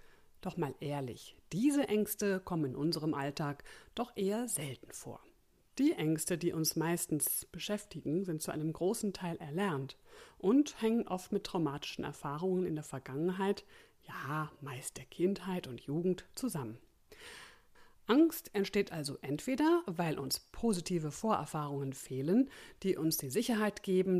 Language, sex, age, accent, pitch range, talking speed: German, female, 50-69, German, 155-215 Hz, 135 wpm